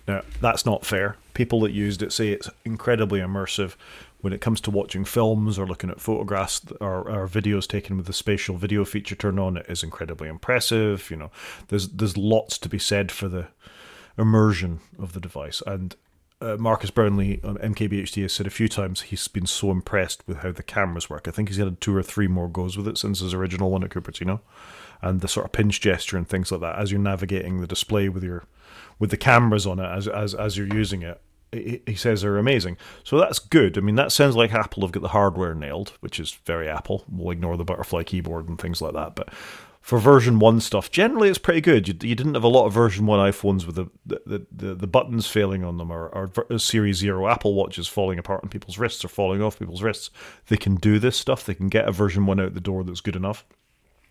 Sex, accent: male, British